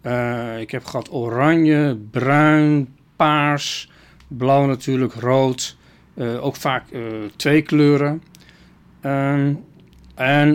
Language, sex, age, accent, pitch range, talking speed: Dutch, male, 40-59, Dutch, 125-165 Hz, 100 wpm